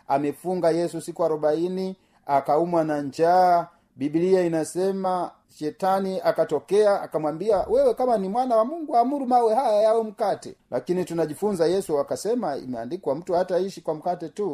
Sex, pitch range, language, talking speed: male, 145-190 Hz, Swahili, 135 wpm